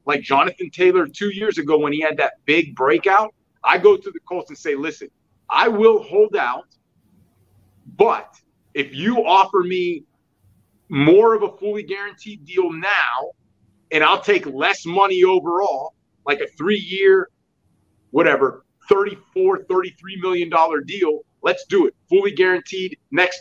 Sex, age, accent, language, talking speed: male, 30-49, American, English, 145 wpm